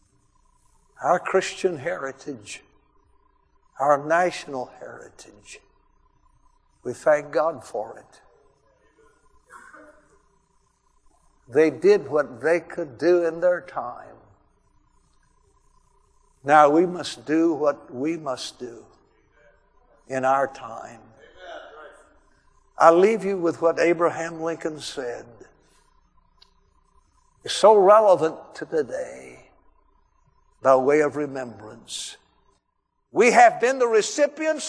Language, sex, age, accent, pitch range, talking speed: English, male, 60-79, American, 170-280 Hz, 95 wpm